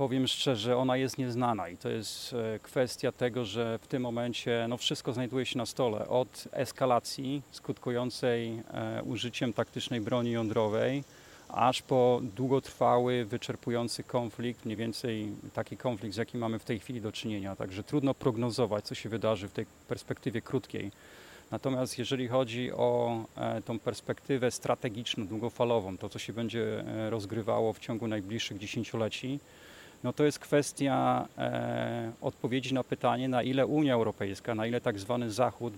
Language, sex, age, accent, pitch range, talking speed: Polish, male, 30-49, native, 115-130 Hz, 150 wpm